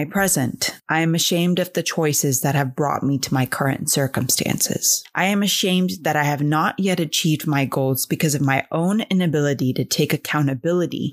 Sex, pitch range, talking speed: female, 140-180 Hz, 180 wpm